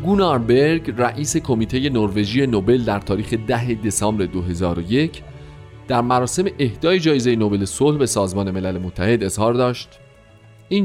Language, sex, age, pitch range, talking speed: Persian, male, 40-59, 105-140 Hz, 125 wpm